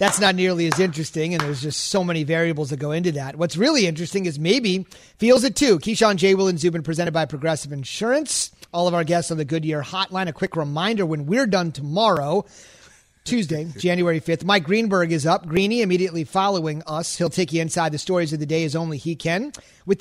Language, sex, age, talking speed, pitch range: English, male, 30-49, 215 wpm, 155-195 Hz